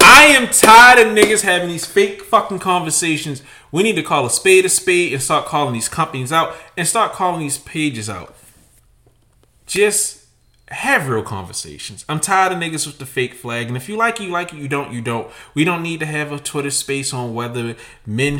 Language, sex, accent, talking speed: English, male, American, 210 wpm